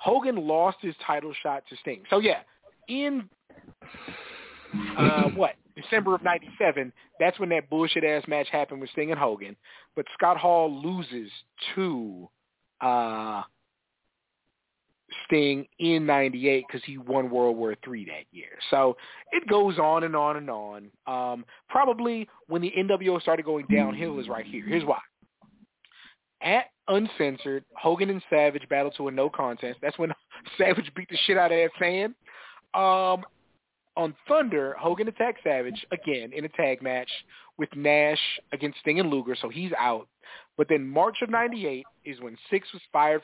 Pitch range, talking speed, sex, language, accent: 135-180 Hz, 155 wpm, male, English, American